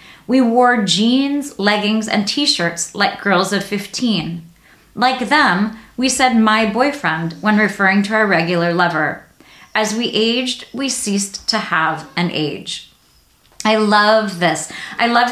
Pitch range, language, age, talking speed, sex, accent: 180-235 Hz, English, 30-49, 140 wpm, female, American